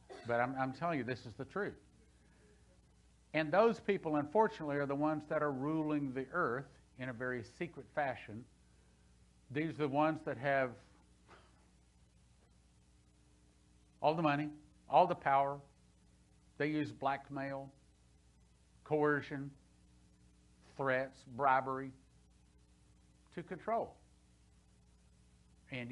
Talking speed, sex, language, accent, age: 110 wpm, male, English, American, 60-79